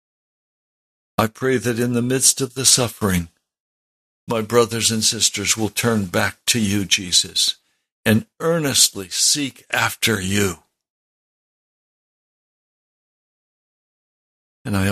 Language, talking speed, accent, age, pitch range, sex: English, 105 wpm, American, 60-79, 100-135 Hz, male